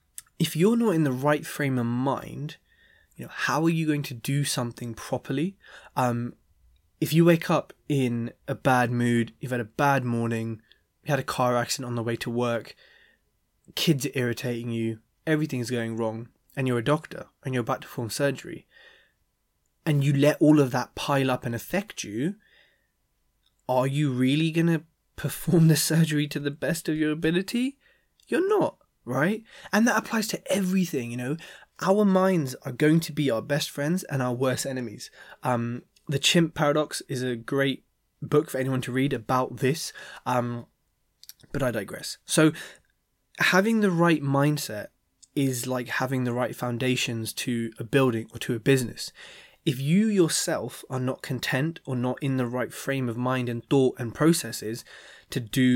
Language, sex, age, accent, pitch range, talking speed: English, male, 20-39, British, 120-155 Hz, 175 wpm